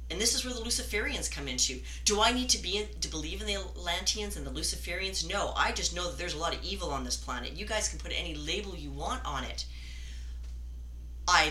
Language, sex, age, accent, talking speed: English, female, 30-49, American, 240 wpm